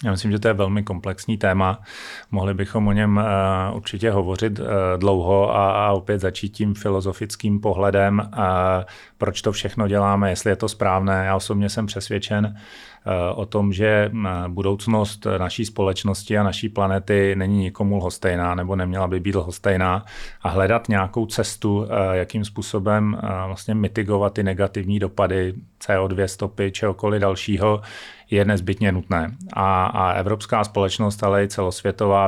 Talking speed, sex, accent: 140 wpm, male, native